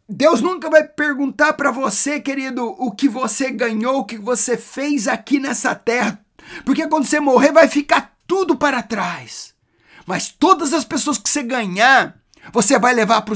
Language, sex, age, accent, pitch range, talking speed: English, male, 50-69, Brazilian, 280-345 Hz, 170 wpm